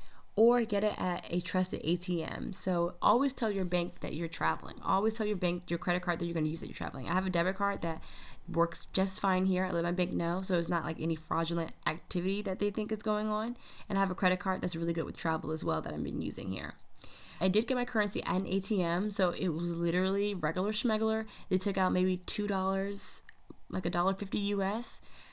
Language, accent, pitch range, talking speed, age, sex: English, American, 170-215 Hz, 230 wpm, 20-39, female